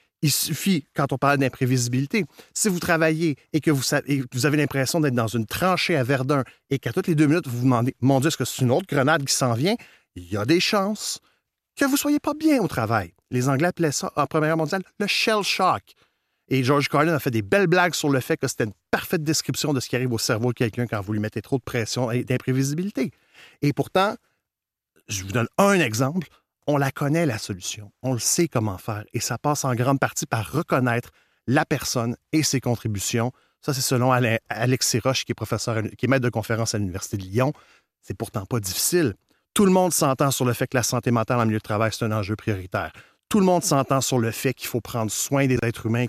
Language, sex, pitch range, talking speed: French, male, 115-155 Hz, 245 wpm